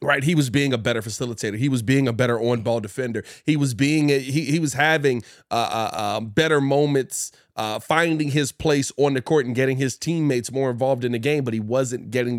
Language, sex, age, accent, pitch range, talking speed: English, male, 30-49, American, 125-145 Hz, 235 wpm